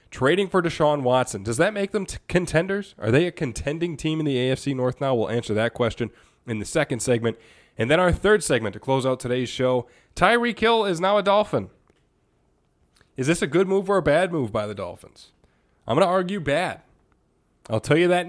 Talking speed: 210 wpm